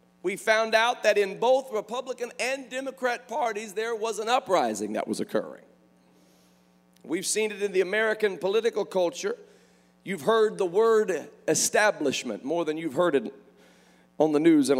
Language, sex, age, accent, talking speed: English, male, 40-59, American, 160 wpm